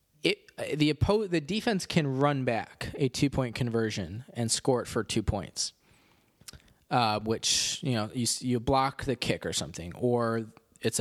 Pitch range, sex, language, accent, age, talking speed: 115-145 Hz, male, English, American, 20-39, 145 wpm